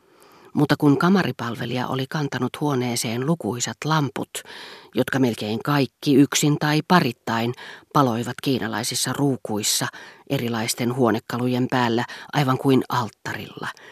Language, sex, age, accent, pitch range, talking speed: Finnish, female, 40-59, native, 125-155 Hz, 100 wpm